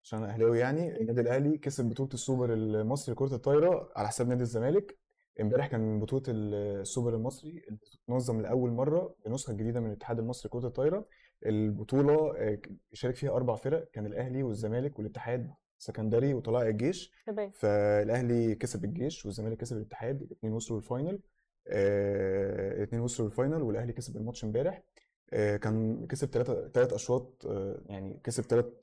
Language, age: Arabic, 20-39